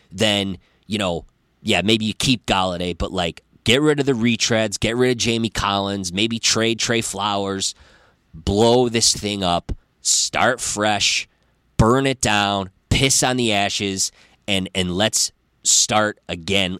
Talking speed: 150 wpm